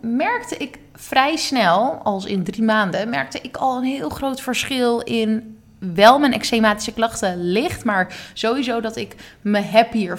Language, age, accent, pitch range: Dutch, 20-39, Dutch, 195-245 Hz